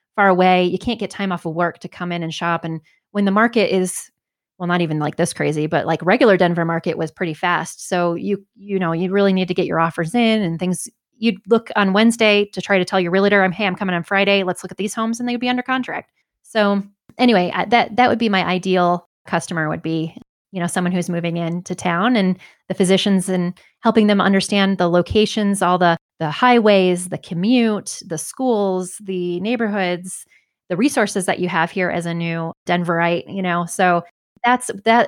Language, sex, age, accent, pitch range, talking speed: English, female, 30-49, American, 175-210 Hz, 215 wpm